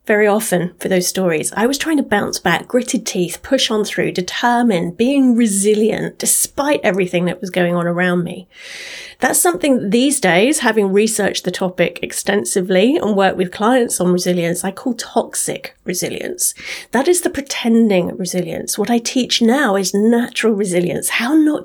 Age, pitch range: 30-49, 185-255 Hz